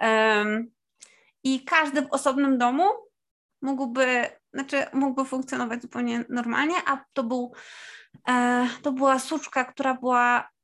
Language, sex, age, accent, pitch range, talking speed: Polish, female, 20-39, native, 240-280 Hz, 105 wpm